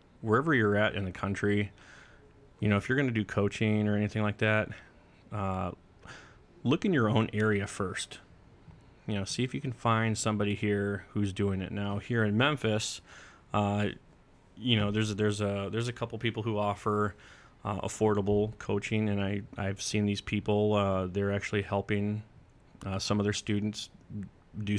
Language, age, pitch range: English, 30-49, 100-110 Hz